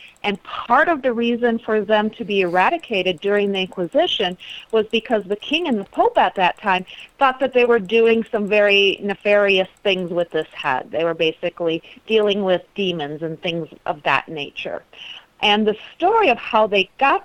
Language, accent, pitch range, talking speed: English, American, 190-240 Hz, 185 wpm